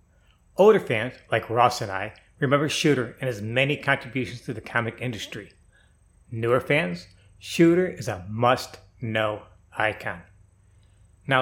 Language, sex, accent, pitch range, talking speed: English, male, American, 100-135 Hz, 125 wpm